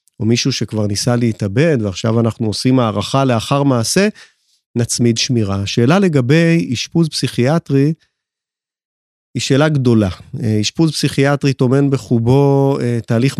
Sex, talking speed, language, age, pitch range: male, 110 wpm, Hebrew, 30-49, 120-145 Hz